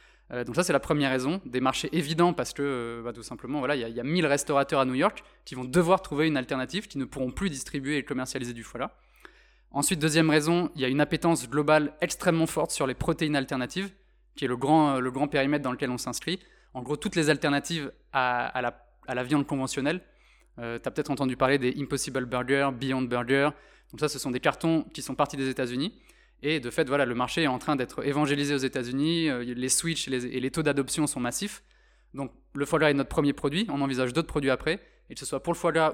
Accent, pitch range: French, 130-155 Hz